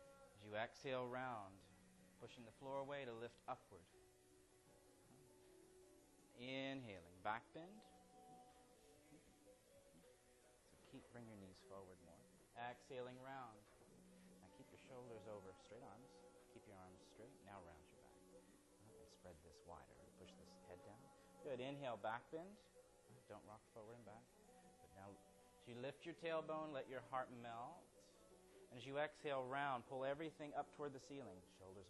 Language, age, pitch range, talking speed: English, 30-49, 100-145 Hz, 145 wpm